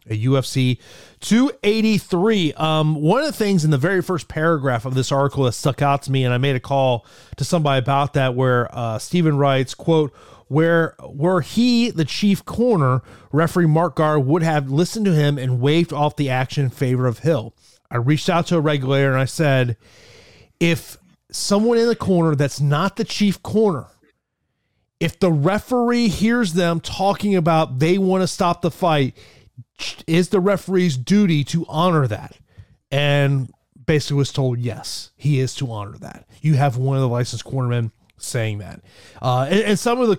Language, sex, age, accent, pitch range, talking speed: English, male, 30-49, American, 130-180 Hz, 180 wpm